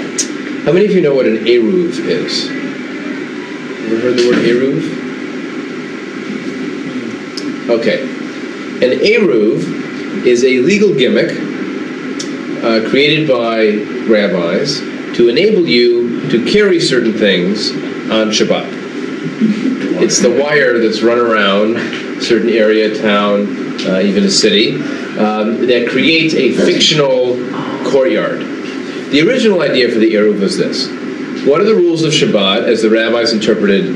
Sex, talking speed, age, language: male, 125 wpm, 40-59, English